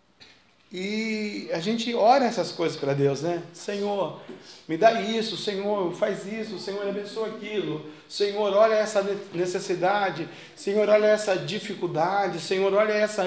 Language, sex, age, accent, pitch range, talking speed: Portuguese, male, 40-59, Brazilian, 160-215 Hz, 135 wpm